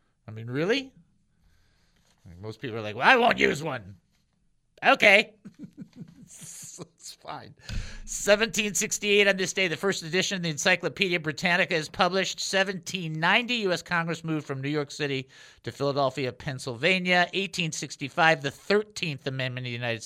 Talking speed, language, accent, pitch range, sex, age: 140 wpm, English, American, 125-175 Hz, male, 50-69